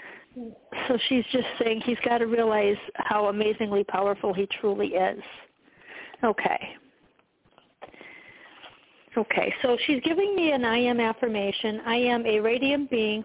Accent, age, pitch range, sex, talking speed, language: American, 50-69, 220-275 Hz, female, 130 wpm, English